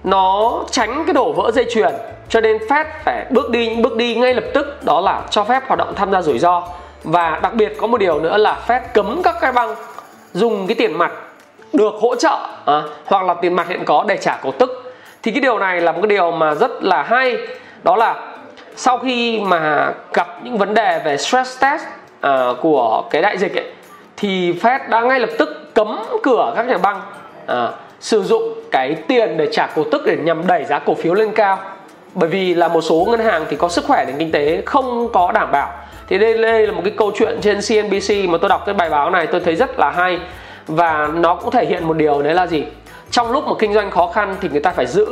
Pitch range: 180-255 Hz